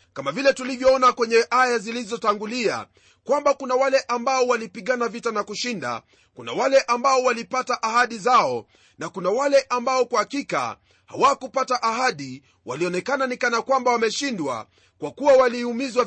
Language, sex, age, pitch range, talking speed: Swahili, male, 40-59, 230-270 Hz, 130 wpm